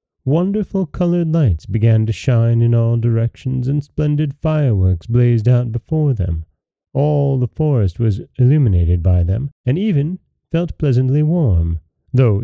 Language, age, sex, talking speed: English, 30-49, male, 140 wpm